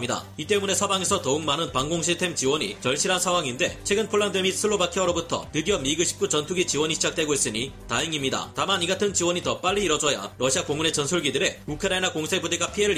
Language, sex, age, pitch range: Korean, male, 30-49, 145-190 Hz